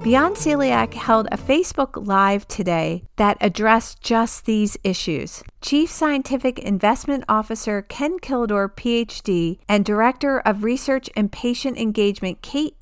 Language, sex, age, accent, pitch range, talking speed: English, female, 40-59, American, 205-260 Hz, 125 wpm